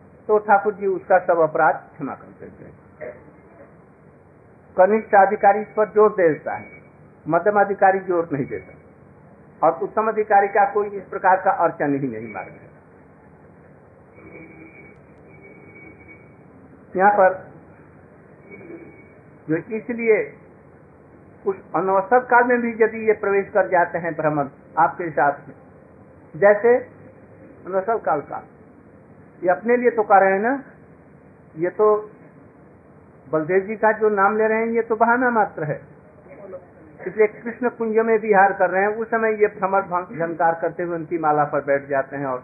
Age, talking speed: 50-69, 135 wpm